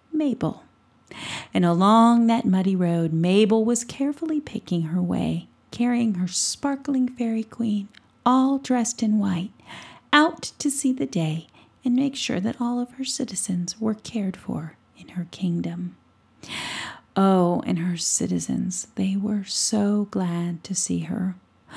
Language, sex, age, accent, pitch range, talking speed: English, female, 40-59, American, 180-245 Hz, 140 wpm